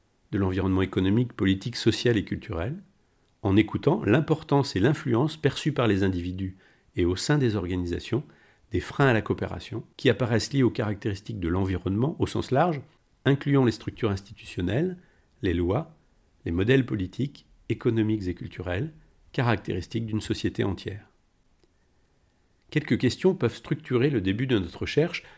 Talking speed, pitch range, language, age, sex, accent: 145 wpm, 95-130 Hz, French, 50-69, male, French